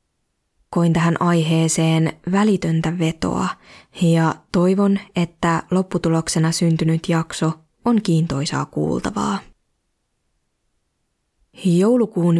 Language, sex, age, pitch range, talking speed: Finnish, female, 20-39, 160-180 Hz, 75 wpm